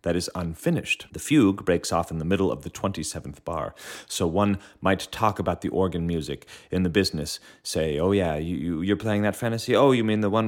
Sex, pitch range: male, 80-100 Hz